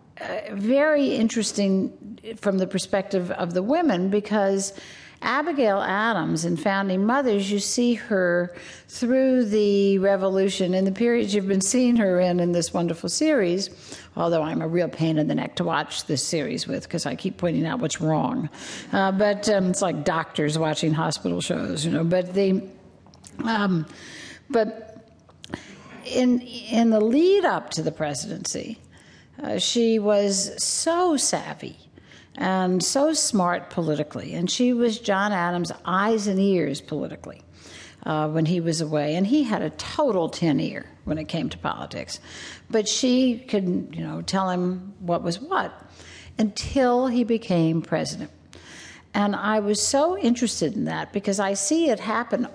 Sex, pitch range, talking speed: female, 175-230 Hz, 155 wpm